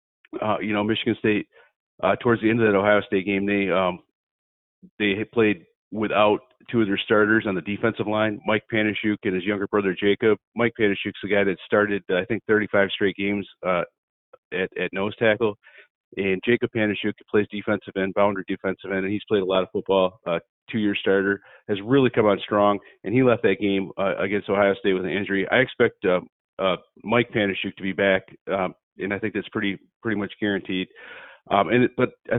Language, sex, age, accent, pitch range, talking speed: English, male, 40-59, American, 100-115 Hz, 205 wpm